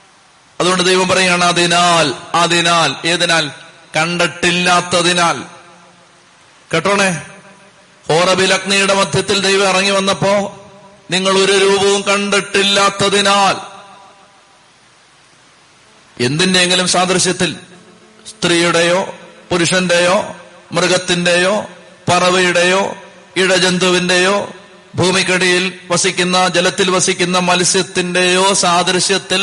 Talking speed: 60 wpm